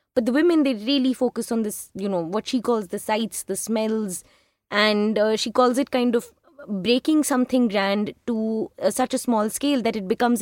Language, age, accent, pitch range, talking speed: Hindi, 20-39, native, 195-235 Hz, 205 wpm